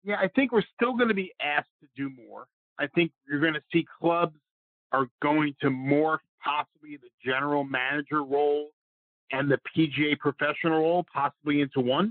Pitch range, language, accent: 130-165 Hz, English, American